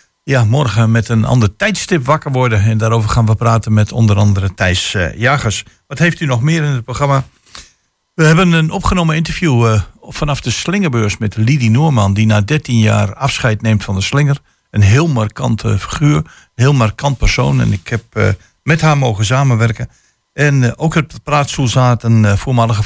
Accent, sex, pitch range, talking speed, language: Dutch, male, 105-135 Hz, 180 wpm, Dutch